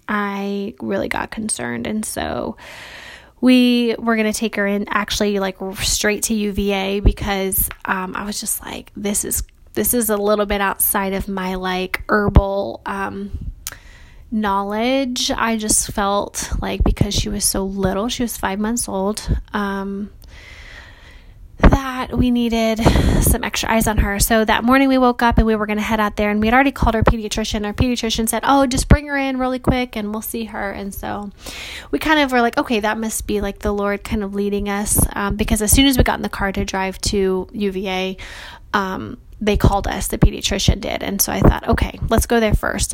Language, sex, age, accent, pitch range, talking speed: English, female, 20-39, American, 200-235 Hz, 200 wpm